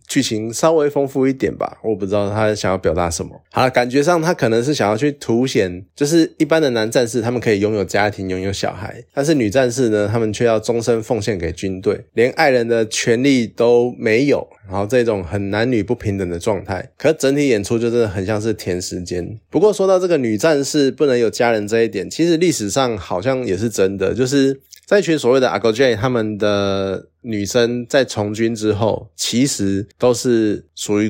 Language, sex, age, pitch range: Chinese, male, 20-39, 100-130 Hz